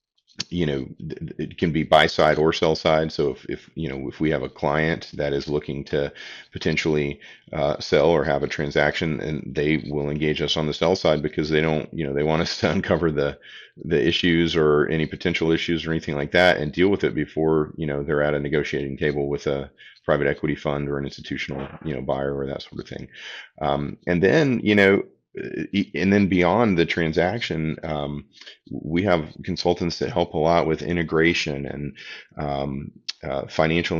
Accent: American